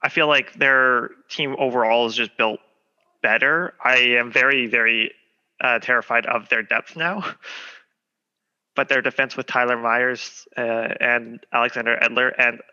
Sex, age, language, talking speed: male, 20-39, English, 145 wpm